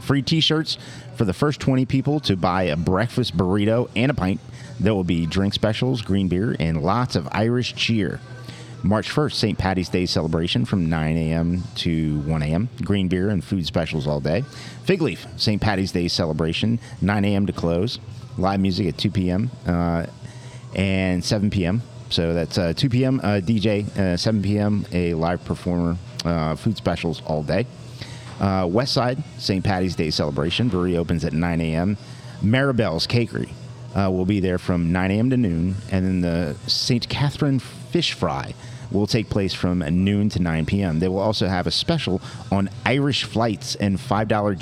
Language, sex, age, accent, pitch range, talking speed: English, male, 40-59, American, 90-125 Hz, 175 wpm